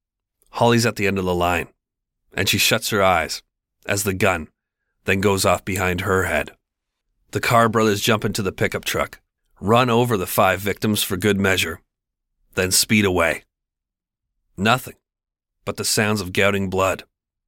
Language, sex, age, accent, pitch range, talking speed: English, male, 40-59, American, 95-115 Hz, 160 wpm